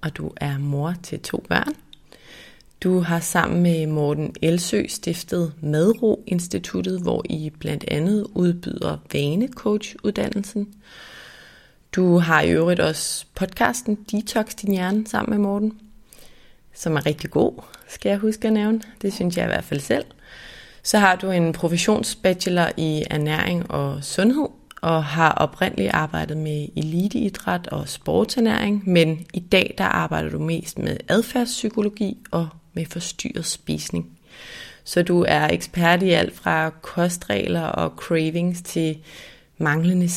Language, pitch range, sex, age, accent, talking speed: Danish, 155-195 Hz, female, 30-49, native, 135 wpm